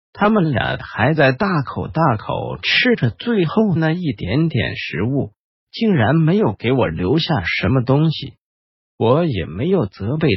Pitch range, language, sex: 110-175 Hz, Chinese, male